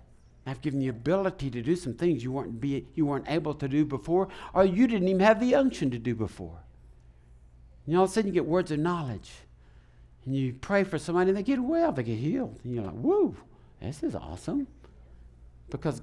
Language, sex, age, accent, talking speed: English, male, 60-79, American, 215 wpm